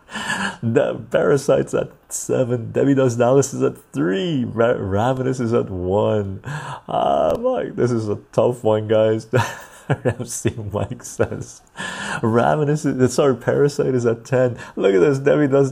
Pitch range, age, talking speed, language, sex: 100-125 Hz, 30-49, 150 wpm, English, male